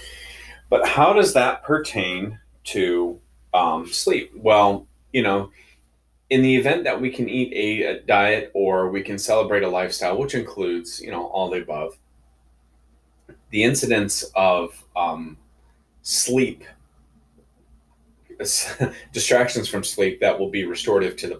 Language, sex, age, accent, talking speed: English, male, 30-49, American, 135 wpm